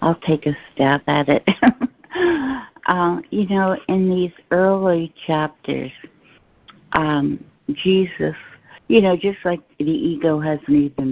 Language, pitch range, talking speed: English, 130-175 Hz, 125 wpm